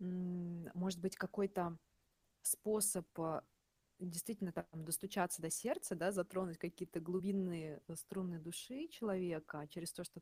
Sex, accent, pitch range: female, native, 170-195 Hz